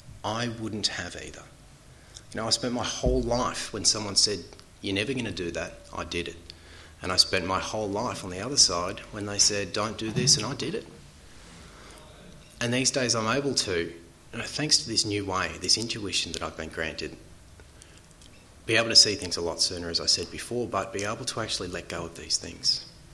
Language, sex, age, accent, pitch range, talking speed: English, male, 30-49, Australian, 85-110 Hz, 215 wpm